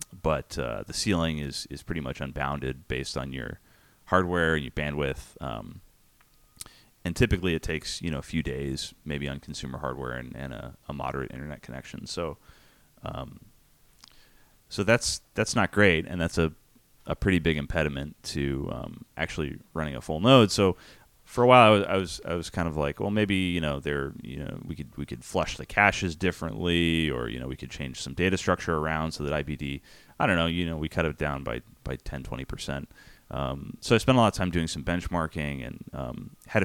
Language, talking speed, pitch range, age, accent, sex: English, 205 wpm, 70-90 Hz, 30-49, American, male